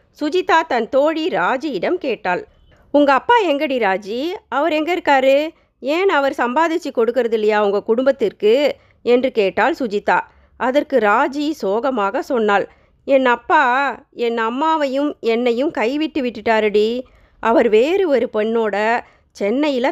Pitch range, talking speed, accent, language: 220-290 Hz, 110 wpm, native, Tamil